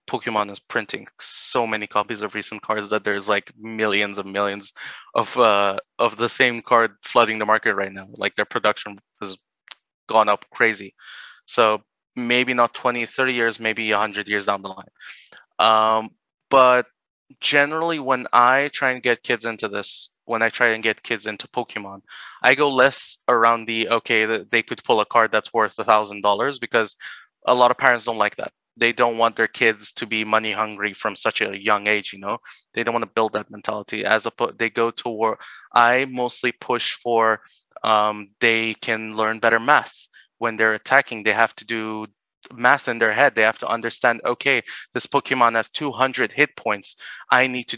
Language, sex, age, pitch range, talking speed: English, male, 20-39, 105-120 Hz, 190 wpm